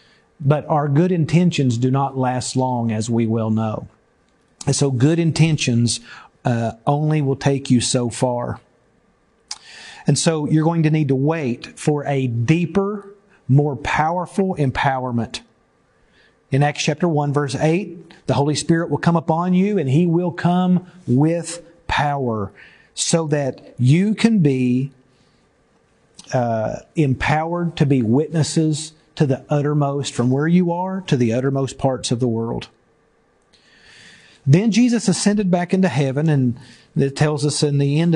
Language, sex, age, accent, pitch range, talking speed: English, male, 40-59, American, 130-160 Hz, 145 wpm